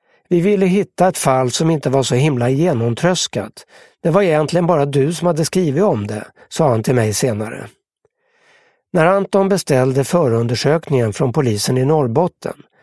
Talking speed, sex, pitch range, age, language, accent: 160 wpm, male, 130-175 Hz, 60-79, English, Swedish